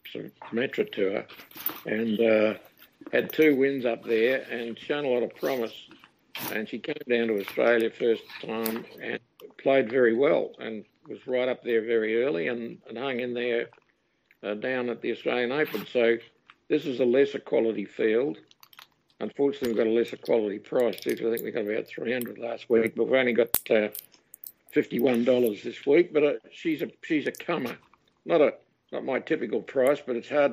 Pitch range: 110-130 Hz